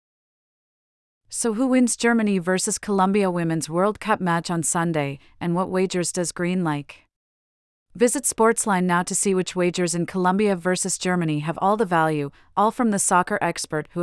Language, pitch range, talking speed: English, 165-200 Hz, 165 wpm